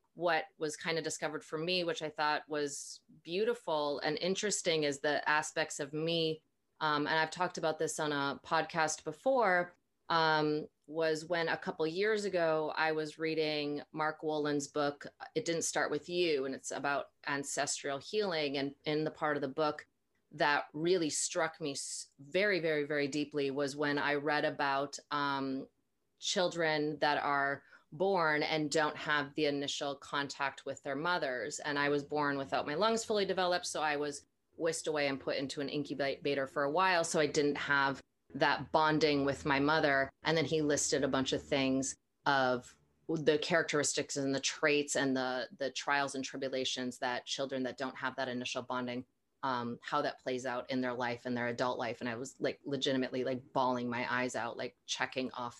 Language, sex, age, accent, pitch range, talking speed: English, female, 30-49, American, 135-155 Hz, 185 wpm